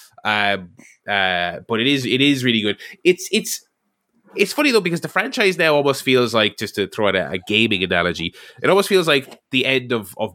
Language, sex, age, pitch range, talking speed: English, male, 20-39, 105-140 Hz, 215 wpm